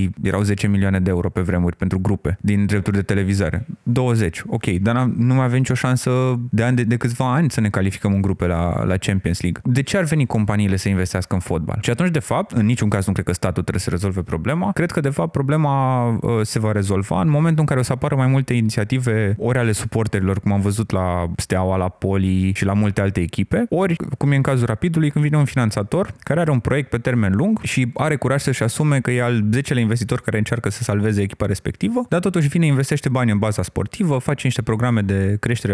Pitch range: 100-140 Hz